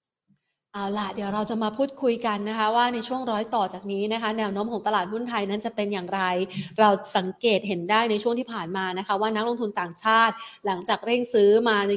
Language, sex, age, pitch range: Thai, female, 30-49, 200-240 Hz